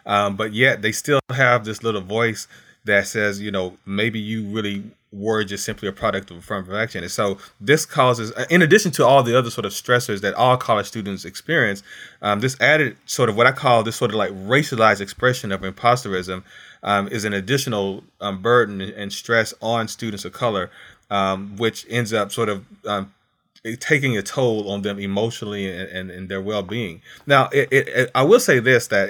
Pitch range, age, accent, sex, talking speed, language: 100-125 Hz, 30-49, American, male, 200 wpm, English